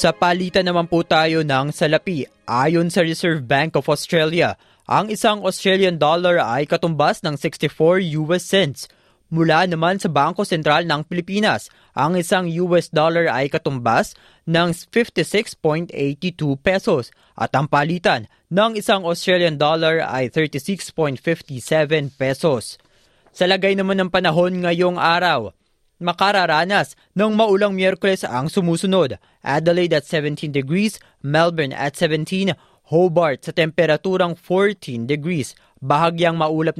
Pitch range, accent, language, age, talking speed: 150-190 Hz, native, Filipino, 20-39, 125 wpm